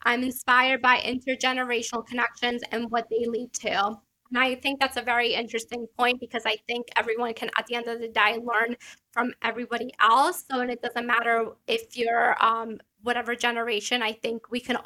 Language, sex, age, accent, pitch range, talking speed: English, female, 10-29, American, 230-255 Hz, 190 wpm